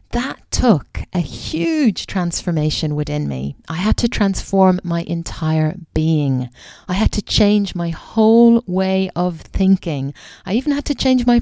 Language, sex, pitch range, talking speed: English, female, 165-230 Hz, 150 wpm